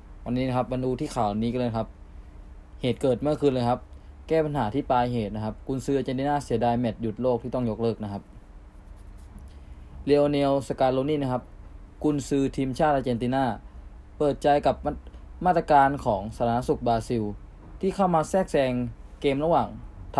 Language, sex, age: Thai, male, 20-39